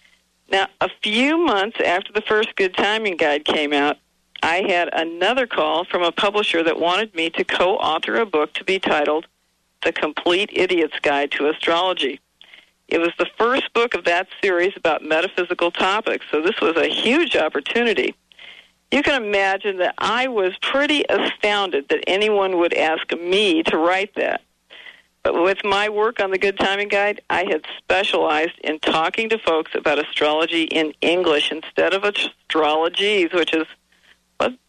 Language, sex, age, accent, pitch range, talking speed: English, female, 50-69, American, 160-215 Hz, 165 wpm